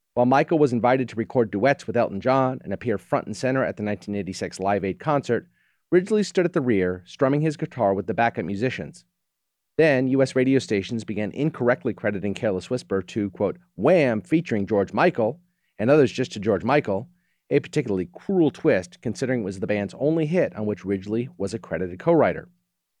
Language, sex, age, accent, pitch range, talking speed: English, male, 40-59, American, 100-140 Hz, 190 wpm